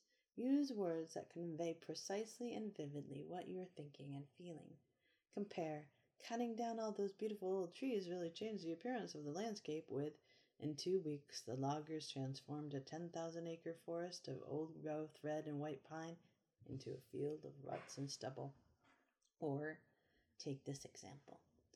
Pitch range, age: 150-195 Hz, 40-59